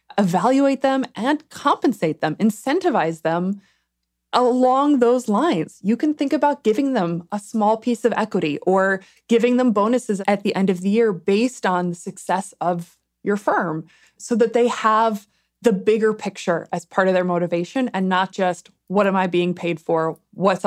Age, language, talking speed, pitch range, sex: 20-39, English, 175 wpm, 180-235 Hz, female